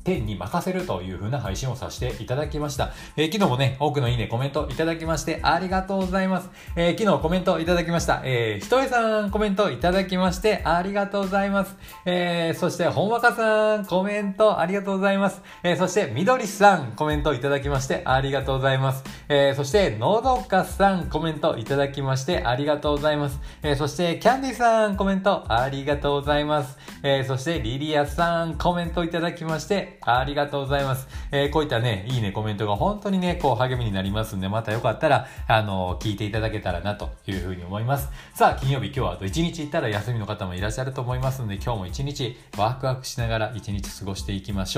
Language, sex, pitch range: Japanese, male, 125-185 Hz